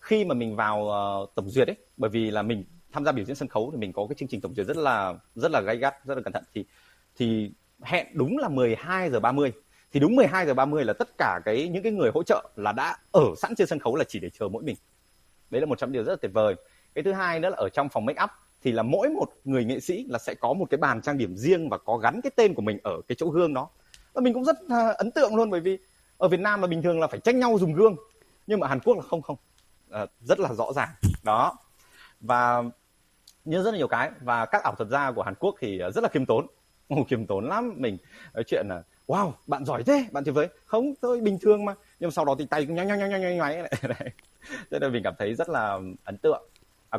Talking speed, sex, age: 260 wpm, male, 20-39